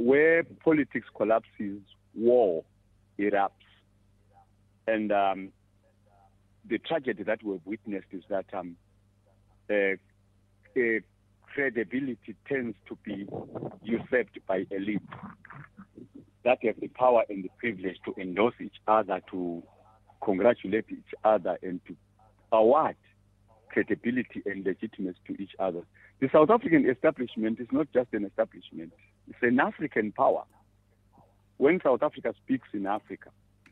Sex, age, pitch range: male, 50-69, 100-115 Hz